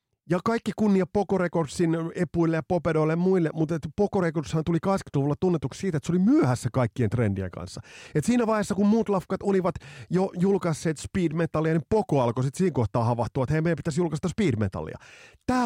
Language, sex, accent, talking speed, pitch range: Finnish, male, native, 175 wpm, 125-185 Hz